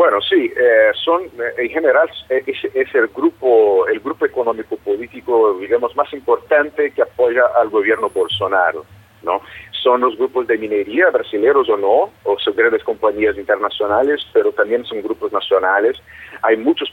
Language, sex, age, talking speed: Spanish, male, 50-69, 155 wpm